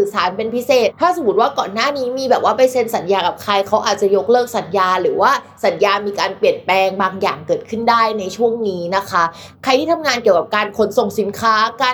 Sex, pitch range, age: female, 200-255 Hz, 20-39